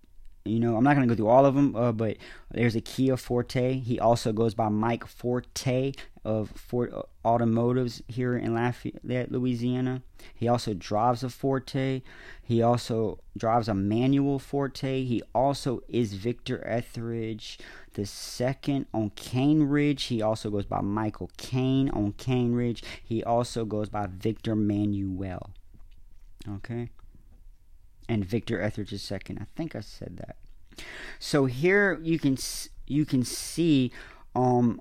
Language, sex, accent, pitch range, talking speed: English, male, American, 110-130 Hz, 145 wpm